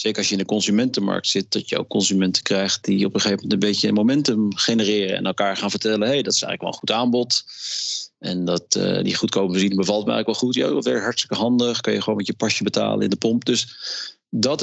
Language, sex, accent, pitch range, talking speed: Dutch, male, Dutch, 110-135 Hz, 250 wpm